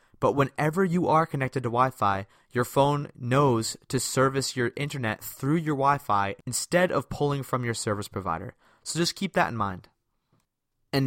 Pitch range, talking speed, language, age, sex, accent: 115-155 Hz, 170 wpm, English, 20-39, male, American